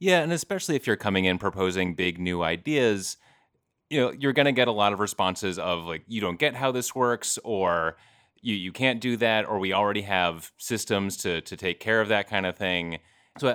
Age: 30-49